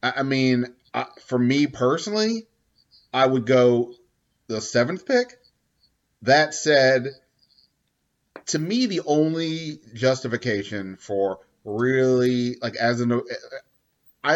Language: English